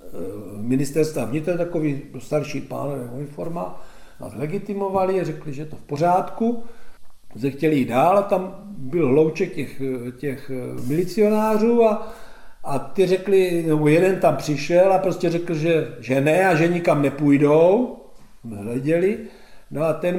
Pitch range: 150-180 Hz